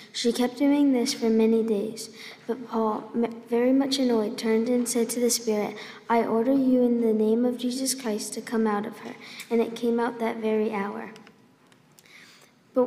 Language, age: English, 20-39